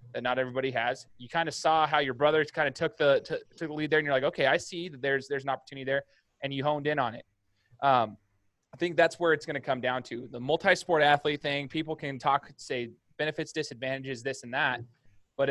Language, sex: English, male